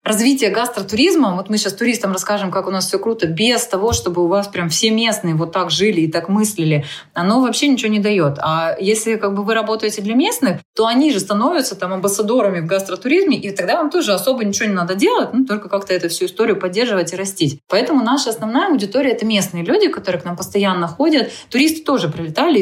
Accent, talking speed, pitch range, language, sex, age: native, 210 wpm, 175-225 Hz, Russian, female, 20-39